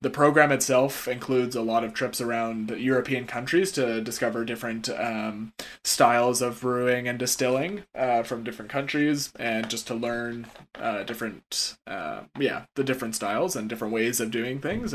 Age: 20-39